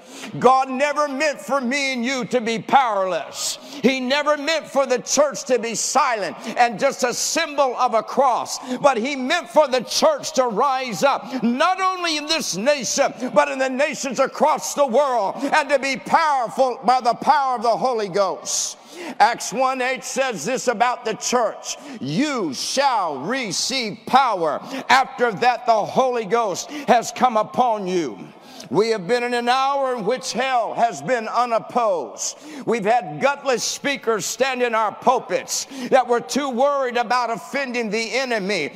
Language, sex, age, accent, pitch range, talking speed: English, male, 60-79, American, 245-290 Hz, 165 wpm